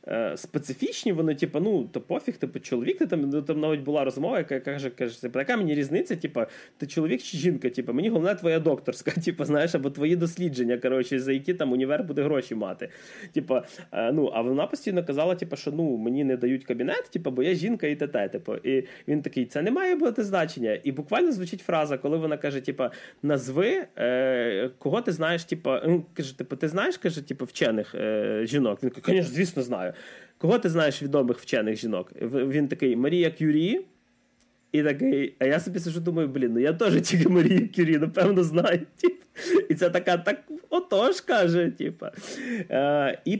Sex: male